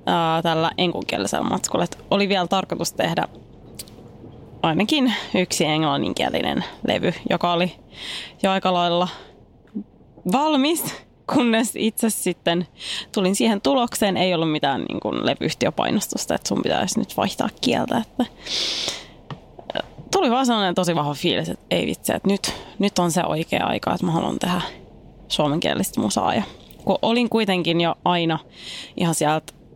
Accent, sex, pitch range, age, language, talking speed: native, female, 170-220 Hz, 20-39, Finnish, 130 wpm